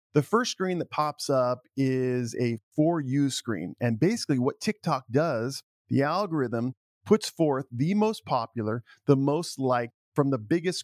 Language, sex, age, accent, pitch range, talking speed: English, male, 40-59, American, 120-150 Hz, 160 wpm